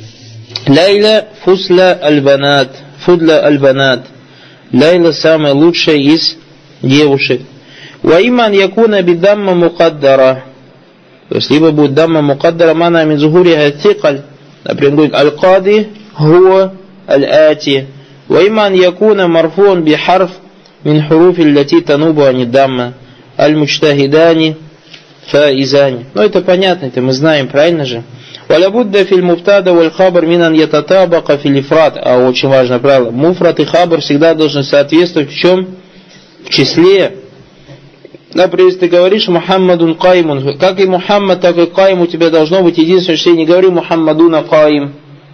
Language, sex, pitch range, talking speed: Russian, male, 140-180 Hz, 100 wpm